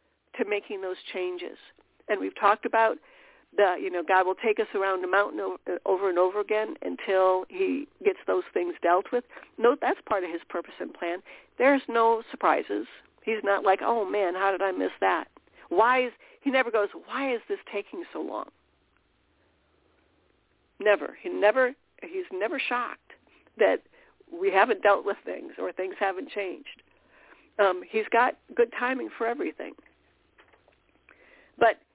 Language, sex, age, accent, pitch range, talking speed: English, female, 60-79, American, 205-335 Hz, 160 wpm